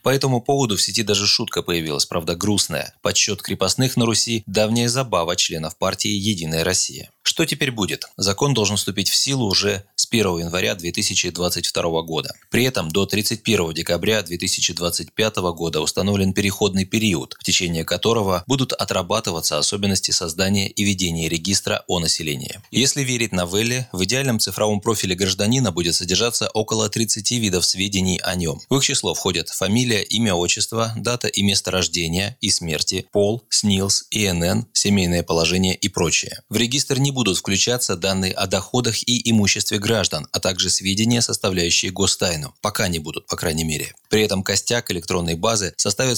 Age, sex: 20-39, male